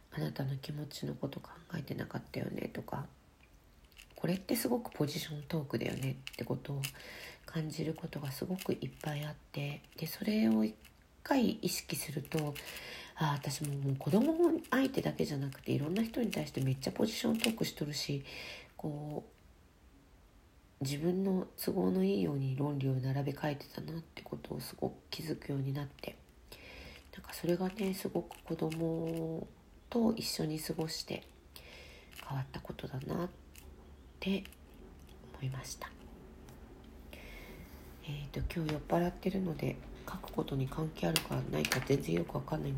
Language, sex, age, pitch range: Japanese, female, 40-59, 115-185 Hz